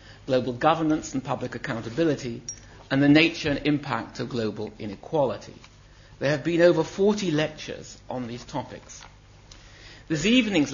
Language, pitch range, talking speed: English, 115-155 Hz, 135 wpm